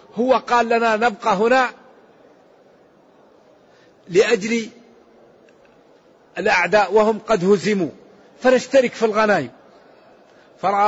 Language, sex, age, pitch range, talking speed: Arabic, male, 50-69, 195-235 Hz, 75 wpm